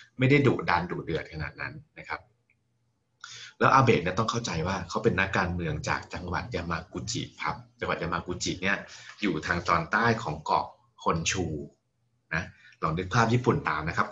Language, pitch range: Thai, 90-120 Hz